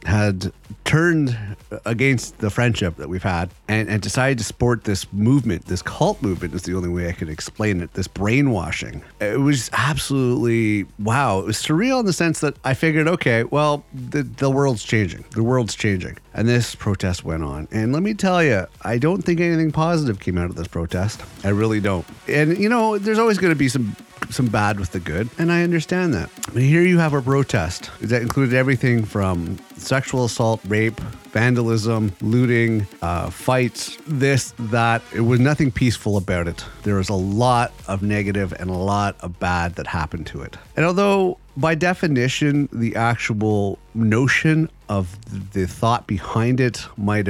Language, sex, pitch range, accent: English, male, 100-140 Hz, American